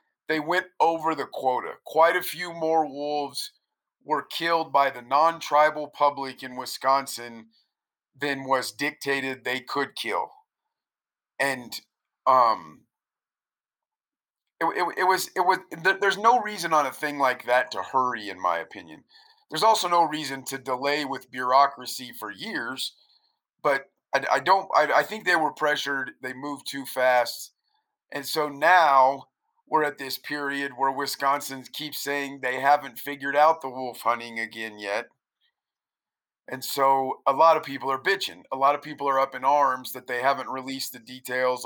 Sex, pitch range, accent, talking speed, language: male, 125-145 Hz, American, 160 wpm, English